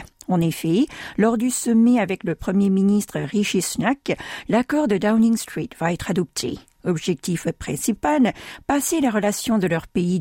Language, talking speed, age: French, 155 wpm, 50-69